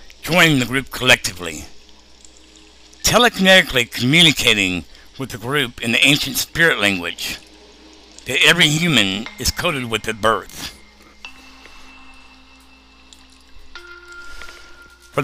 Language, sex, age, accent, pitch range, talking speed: English, male, 60-79, American, 95-155 Hz, 90 wpm